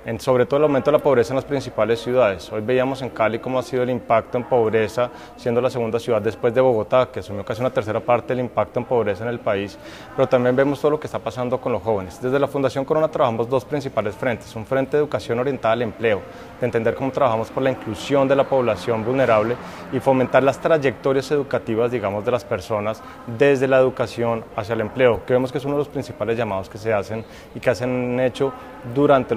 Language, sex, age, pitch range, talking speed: Spanish, male, 20-39, 115-135 Hz, 230 wpm